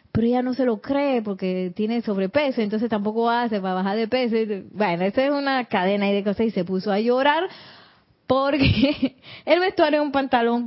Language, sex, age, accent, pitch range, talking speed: Spanish, female, 20-39, American, 205-275 Hz, 195 wpm